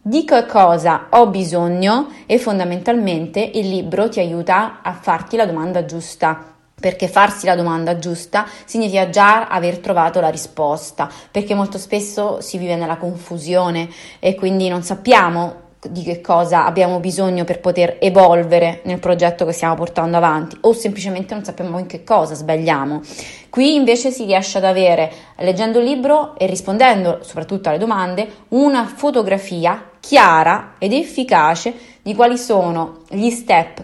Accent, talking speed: native, 150 wpm